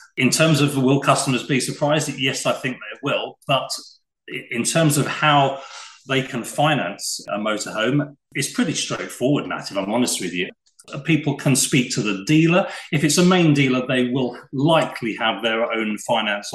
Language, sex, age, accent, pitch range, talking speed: English, male, 40-59, British, 105-145 Hz, 180 wpm